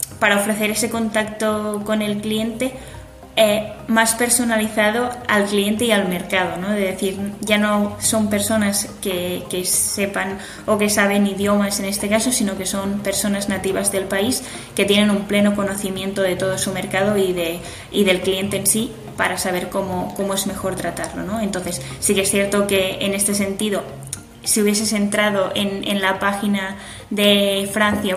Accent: Spanish